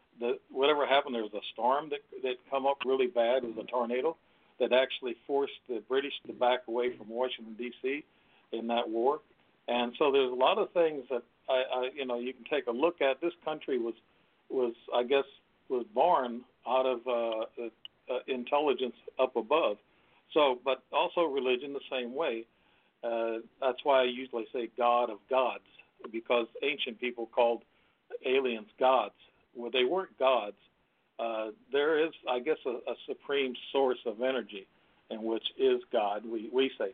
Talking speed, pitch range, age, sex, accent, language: 175 wpm, 115-135 Hz, 60-79, male, American, English